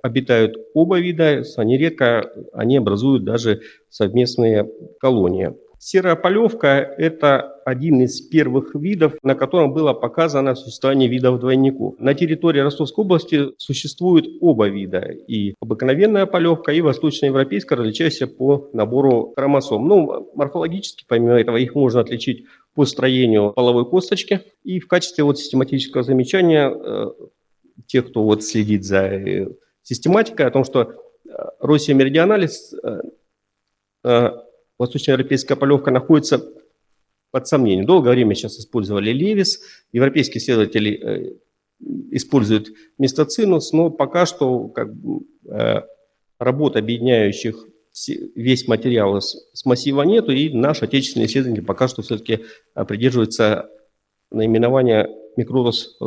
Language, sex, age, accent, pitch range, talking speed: Russian, male, 40-59, native, 115-155 Hz, 120 wpm